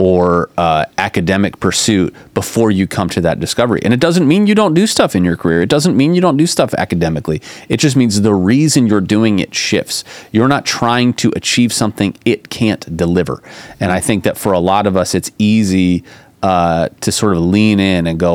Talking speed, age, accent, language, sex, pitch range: 215 wpm, 30-49, American, English, male, 90-115 Hz